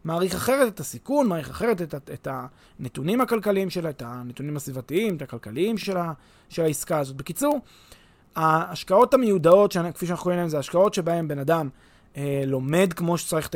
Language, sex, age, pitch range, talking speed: Hebrew, male, 20-39, 145-200 Hz, 175 wpm